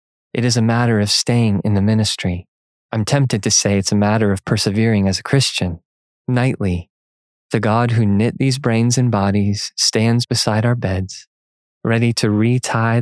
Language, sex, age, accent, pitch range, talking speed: English, male, 20-39, American, 100-120 Hz, 170 wpm